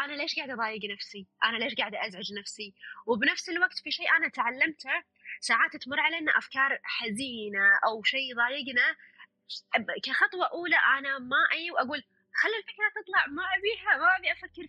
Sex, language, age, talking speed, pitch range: female, Arabic, 20-39, 155 wpm, 235-345 Hz